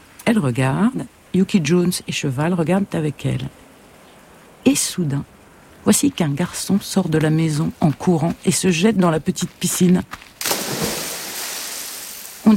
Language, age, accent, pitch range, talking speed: French, 60-79, French, 155-210 Hz, 135 wpm